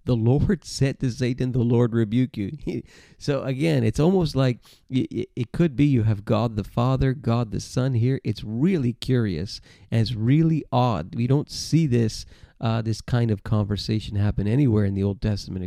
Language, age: English, 40-59